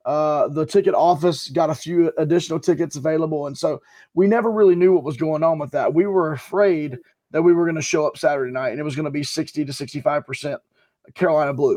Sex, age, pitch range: male, 20-39, 155-180 Hz